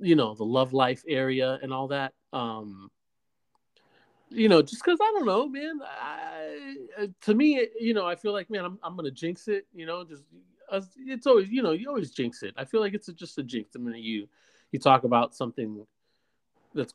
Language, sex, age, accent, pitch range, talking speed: English, male, 30-49, American, 115-175 Hz, 220 wpm